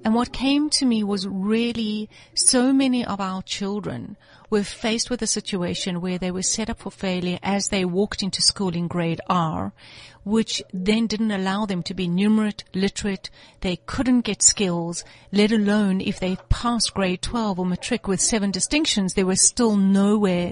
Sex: female